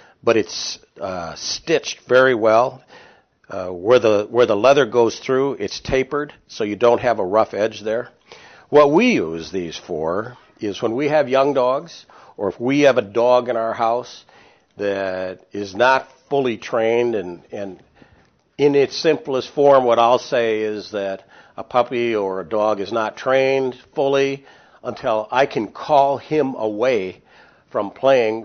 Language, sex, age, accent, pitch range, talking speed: English, male, 60-79, American, 105-130 Hz, 160 wpm